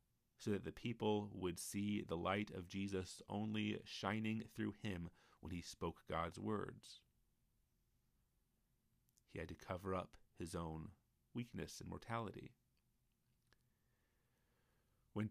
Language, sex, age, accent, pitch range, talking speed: English, male, 30-49, American, 90-110 Hz, 120 wpm